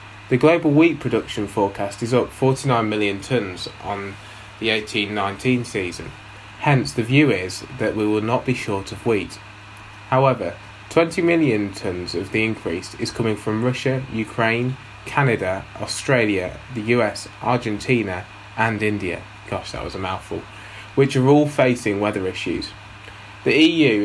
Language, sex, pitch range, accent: English, male, 105-125 Hz, British